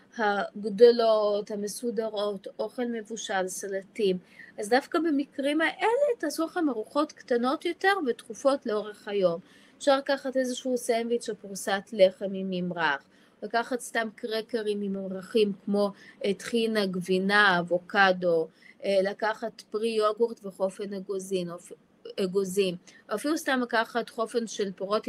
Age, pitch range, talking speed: 20-39, 195-255 Hz, 110 wpm